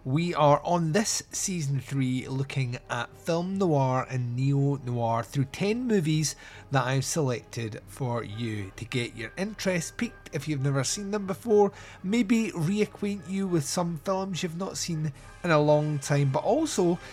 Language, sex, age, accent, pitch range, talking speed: English, male, 30-49, British, 125-180 Hz, 160 wpm